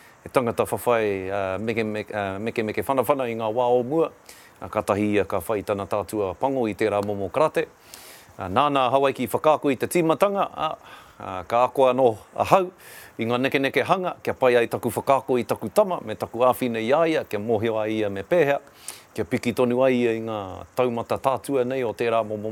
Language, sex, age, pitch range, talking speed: English, male, 40-59, 105-140 Hz, 195 wpm